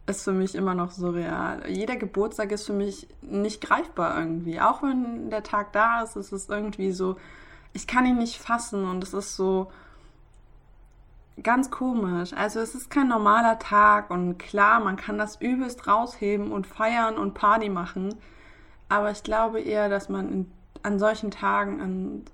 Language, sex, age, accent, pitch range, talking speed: German, female, 20-39, German, 185-220 Hz, 170 wpm